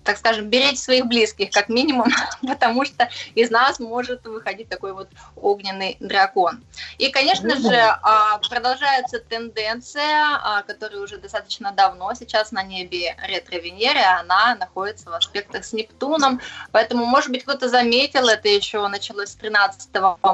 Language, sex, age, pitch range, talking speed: Russian, female, 20-39, 200-255 Hz, 135 wpm